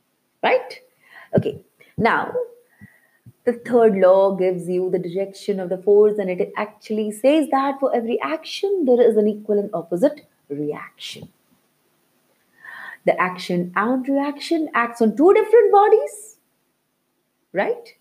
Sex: female